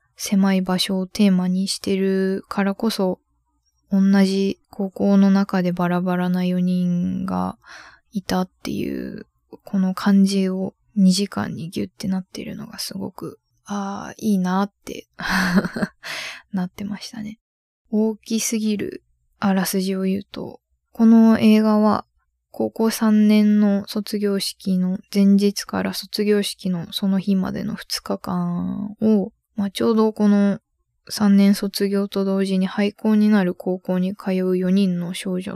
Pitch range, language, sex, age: 185-205 Hz, Japanese, female, 20-39